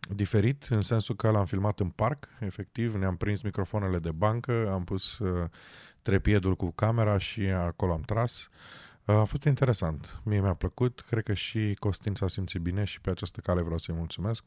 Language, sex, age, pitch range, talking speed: Romanian, male, 20-39, 100-115 Hz, 185 wpm